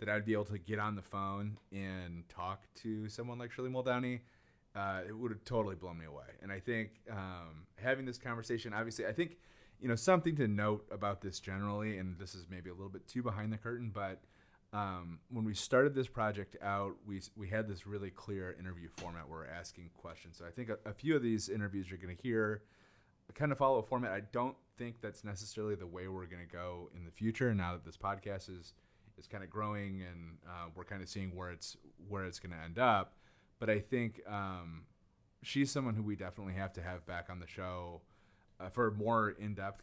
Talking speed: 220 wpm